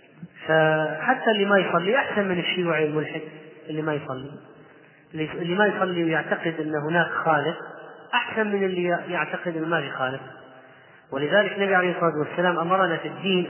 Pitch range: 160-205 Hz